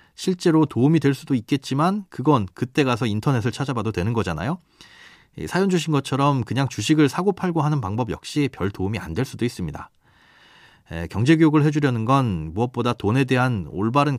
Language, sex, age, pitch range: Korean, male, 30-49, 105-150 Hz